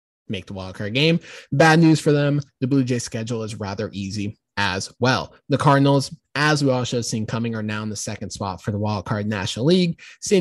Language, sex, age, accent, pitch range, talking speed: English, male, 20-39, American, 115-145 Hz, 230 wpm